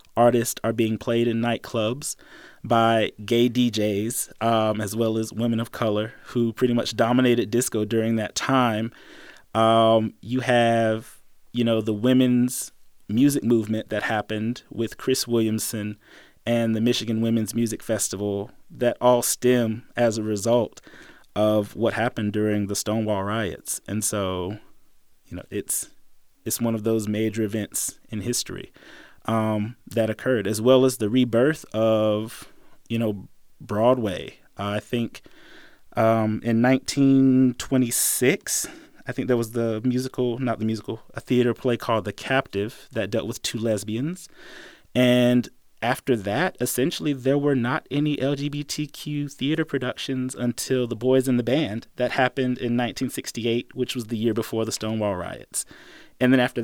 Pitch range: 110-125 Hz